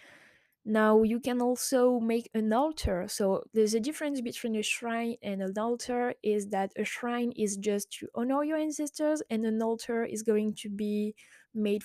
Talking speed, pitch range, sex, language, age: 175 wpm, 200-235 Hz, female, English, 20-39